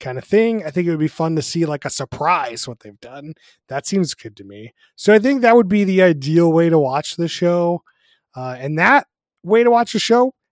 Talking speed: 245 wpm